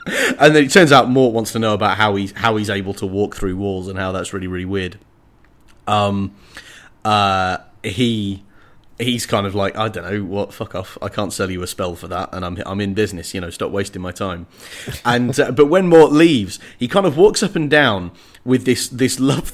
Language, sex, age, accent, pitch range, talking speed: English, male, 30-49, British, 100-130 Hz, 225 wpm